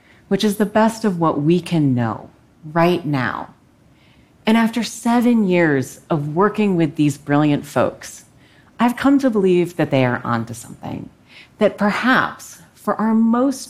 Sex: female